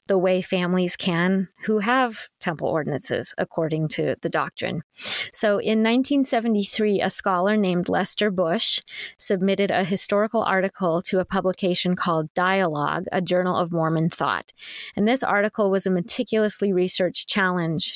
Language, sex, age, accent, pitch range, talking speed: English, female, 30-49, American, 180-215 Hz, 135 wpm